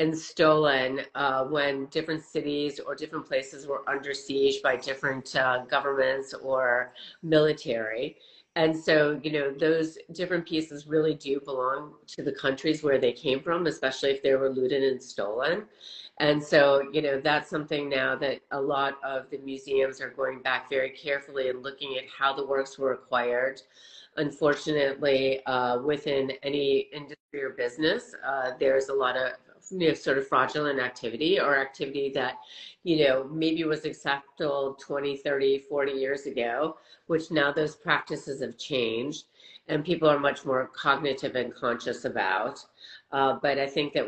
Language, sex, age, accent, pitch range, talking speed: English, female, 30-49, American, 135-155 Hz, 160 wpm